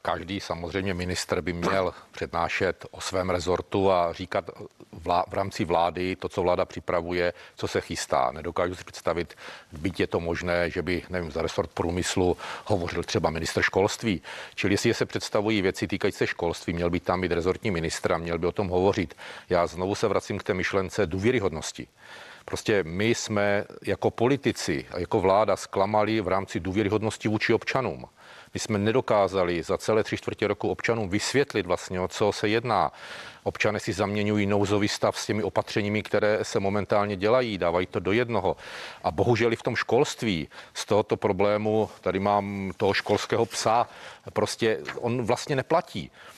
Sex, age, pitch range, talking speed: male, 40-59, 90-110 Hz, 170 wpm